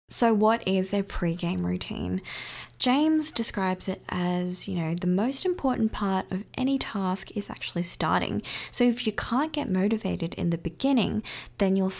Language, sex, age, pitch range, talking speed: English, female, 20-39, 175-225 Hz, 165 wpm